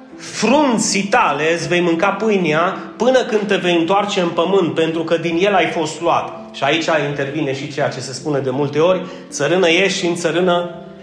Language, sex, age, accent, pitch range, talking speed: Romanian, male, 30-49, native, 150-180 Hz, 195 wpm